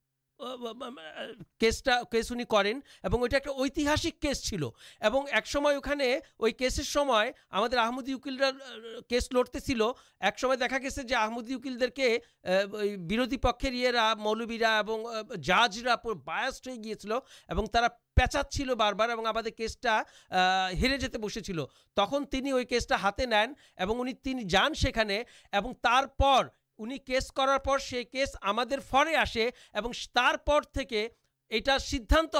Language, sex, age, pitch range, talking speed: Urdu, male, 50-69, 225-270 Hz, 75 wpm